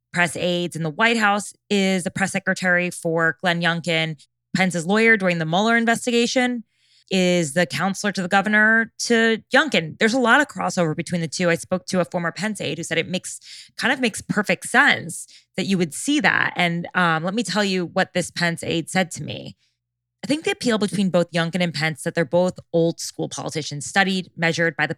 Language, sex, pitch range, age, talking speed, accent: English, female, 165-200 Hz, 20-39, 210 wpm, American